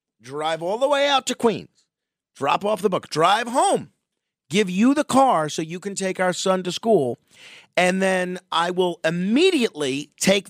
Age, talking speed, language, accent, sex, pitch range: 40-59, 175 wpm, English, American, male, 130-185 Hz